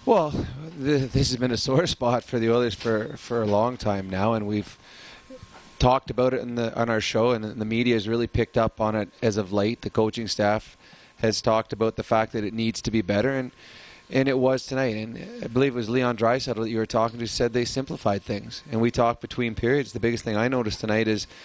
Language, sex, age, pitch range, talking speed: English, male, 30-49, 110-125 Hz, 240 wpm